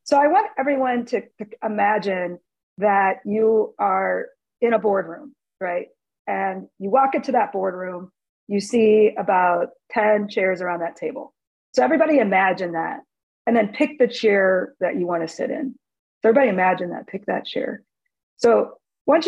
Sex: female